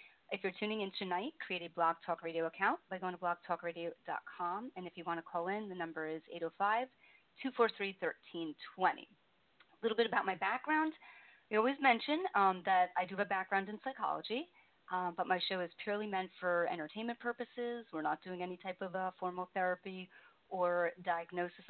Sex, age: female, 30-49